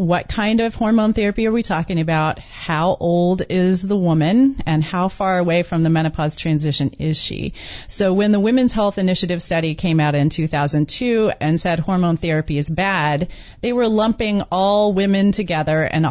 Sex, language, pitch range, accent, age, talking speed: female, English, 160-210 Hz, American, 30-49, 180 wpm